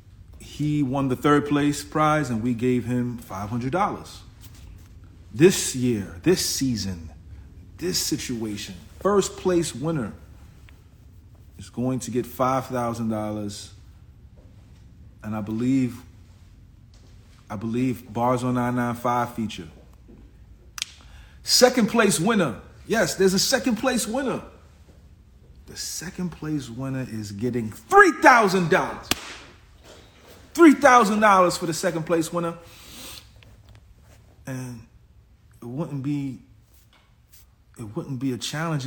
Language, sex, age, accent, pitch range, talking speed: English, male, 40-59, American, 105-160 Hz, 105 wpm